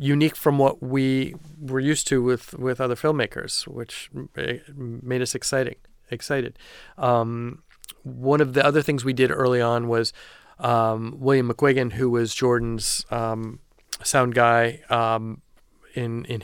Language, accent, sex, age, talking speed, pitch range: English, American, male, 40-59, 140 wpm, 120-140 Hz